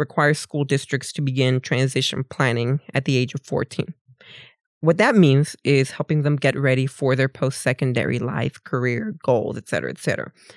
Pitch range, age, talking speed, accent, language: 135-175 Hz, 20-39, 170 wpm, American, English